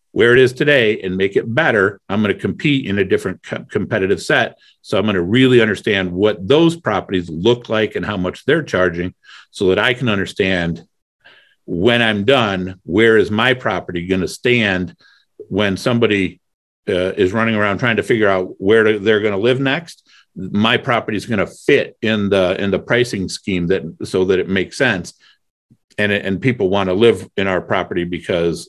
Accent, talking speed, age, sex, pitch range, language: American, 185 wpm, 50-69, male, 95-125 Hz, English